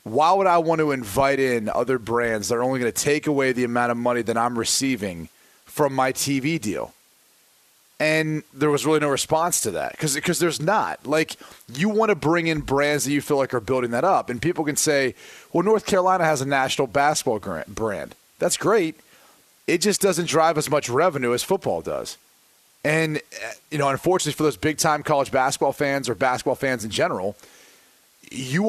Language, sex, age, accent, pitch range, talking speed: English, male, 30-49, American, 130-170 Hz, 195 wpm